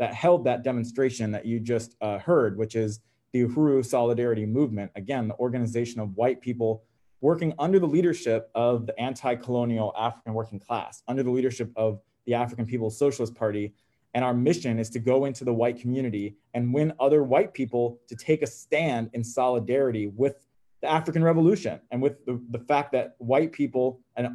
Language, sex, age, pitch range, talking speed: English, male, 20-39, 110-130 Hz, 180 wpm